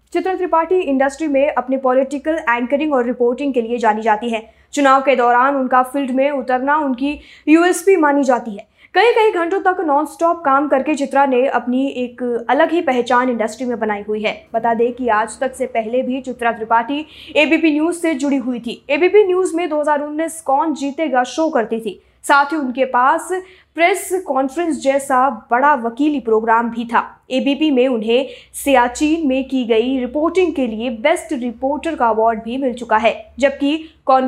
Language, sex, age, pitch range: Hindi, female, 20-39, 250-320 Hz